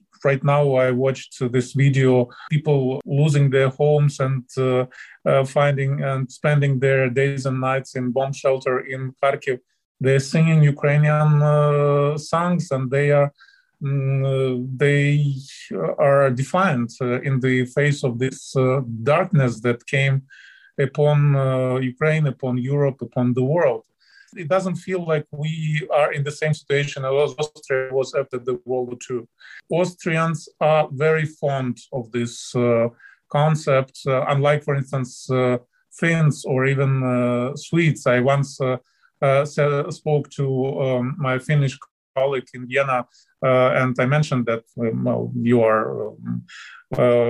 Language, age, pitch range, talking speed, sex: English, 20-39, 130-150 Hz, 145 wpm, male